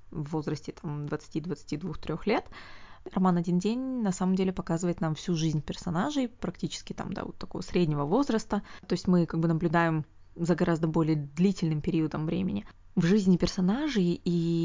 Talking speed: 155 wpm